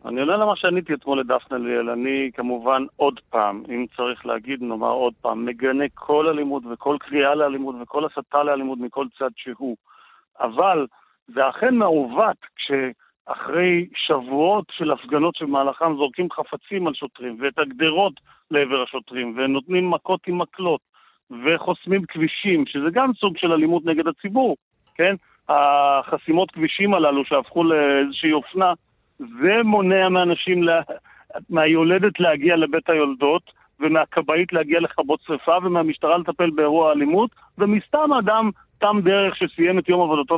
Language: Hebrew